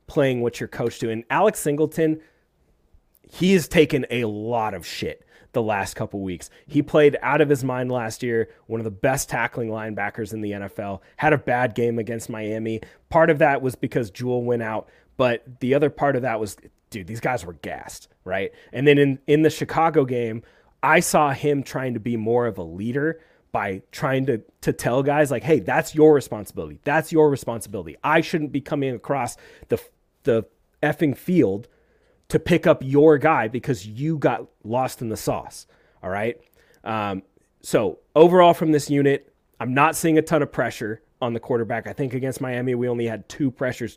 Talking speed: 190 wpm